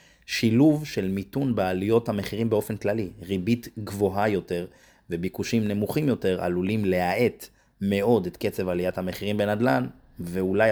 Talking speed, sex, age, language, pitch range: 125 wpm, male, 30-49, Hebrew, 90-105 Hz